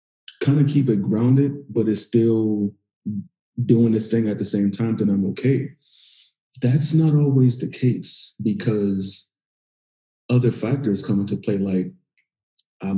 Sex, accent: male, American